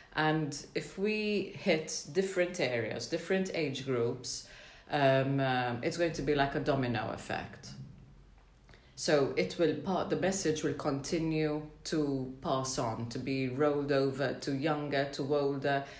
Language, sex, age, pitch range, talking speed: English, female, 30-49, 125-160 Hz, 145 wpm